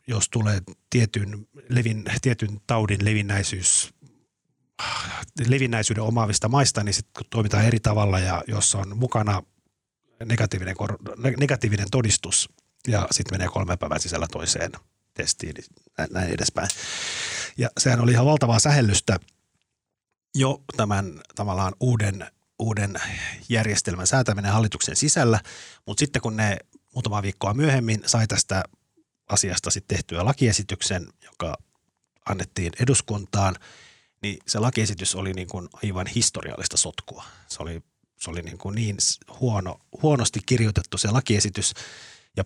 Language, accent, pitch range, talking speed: Finnish, native, 95-115 Hz, 120 wpm